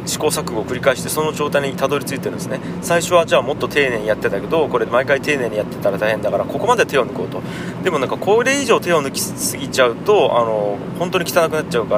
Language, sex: Japanese, male